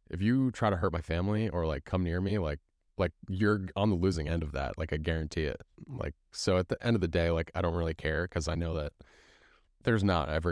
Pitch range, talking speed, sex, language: 80-95 Hz, 255 wpm, male, English